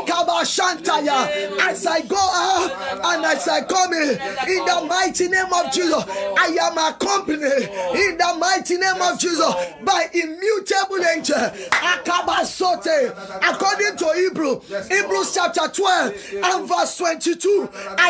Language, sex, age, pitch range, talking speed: English, male, 20-39, 320-380 Hz, 125 wpm